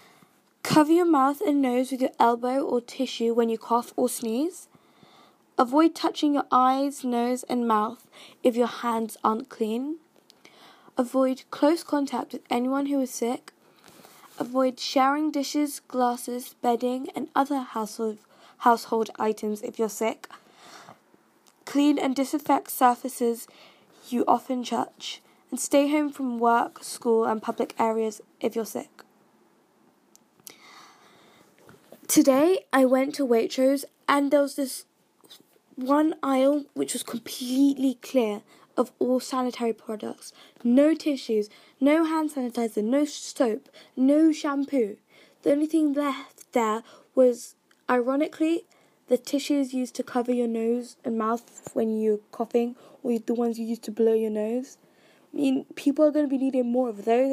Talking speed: 140 wpm